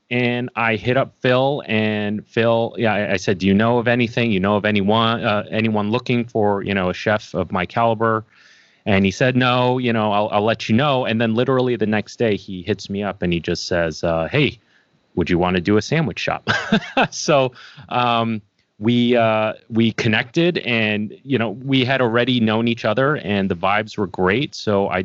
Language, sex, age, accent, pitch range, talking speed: English, male, 30-49, American, 95-115 Hz, 210 wpm